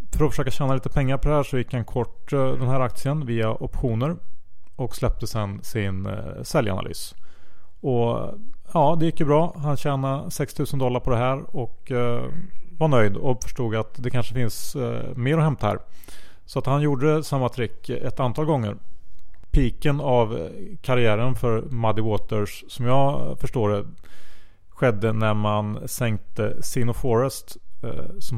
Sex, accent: male, Norwegian